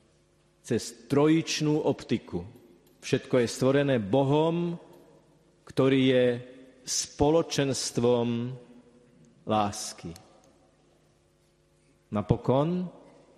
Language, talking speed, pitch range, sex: Slovak, 55 wpm, 120-155 Hz, male